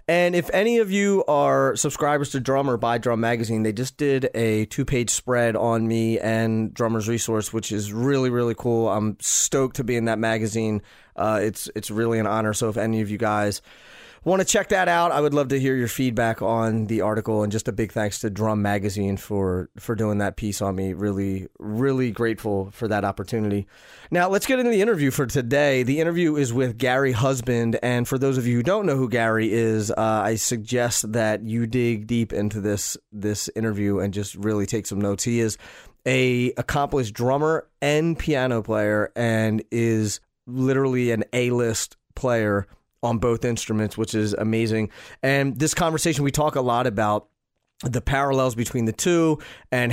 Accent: American